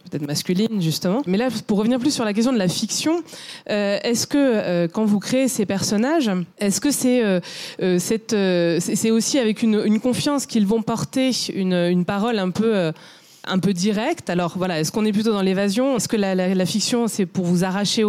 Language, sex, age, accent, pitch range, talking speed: French, female, 30-49, French, 175-220 Hz, 215 wpm